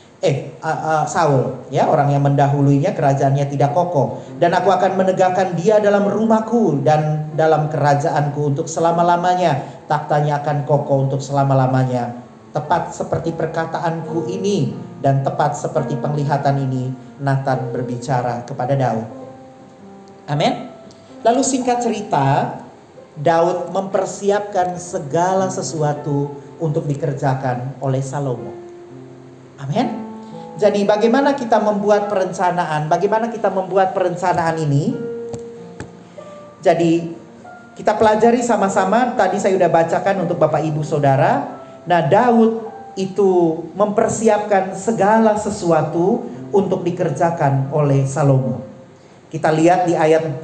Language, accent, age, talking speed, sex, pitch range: Indonesian, native, 40-59, 105 wpm, male, 140-190 Hz